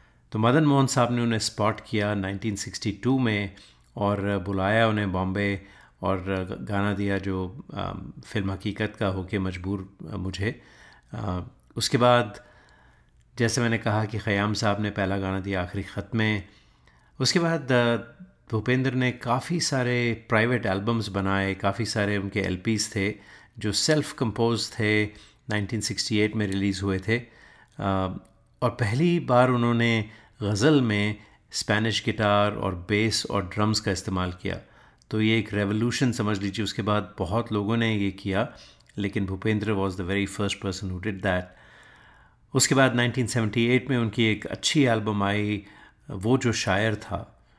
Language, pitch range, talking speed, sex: Hindi, 100-115 Hz, 140 wpm, male